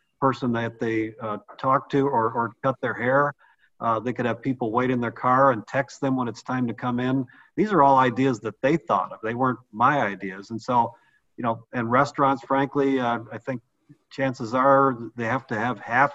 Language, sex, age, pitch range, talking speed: English, male, 40-59, 120-140 Hz, 215 wpm